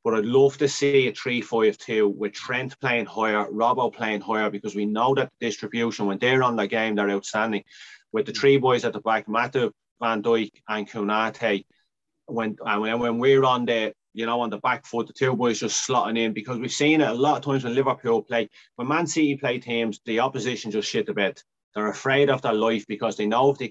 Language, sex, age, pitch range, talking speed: English, male, 30-49, 105-135 Hz, 225 wpm